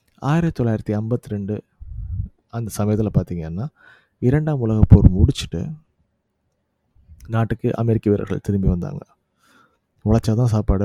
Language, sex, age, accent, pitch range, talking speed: Tamil, male, 30-49, native, 95-115 Hz, 100 wpm